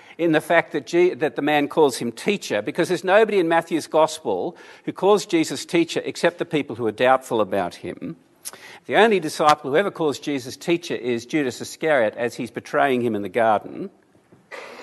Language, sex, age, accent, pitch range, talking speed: English, male, 50-69, Australian, 150-205 Hz, 185 wpm